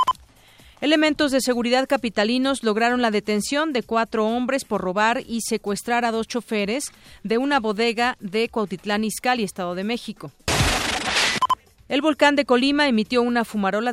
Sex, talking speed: female, 140 wpm